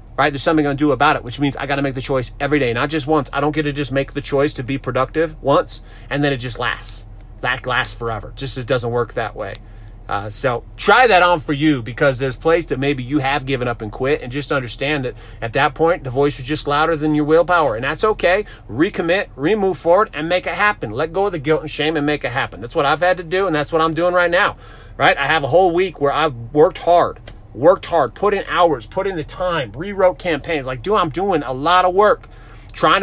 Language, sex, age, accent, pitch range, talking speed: English, male, 30-49, American, 125-160 Hz, 260 wpm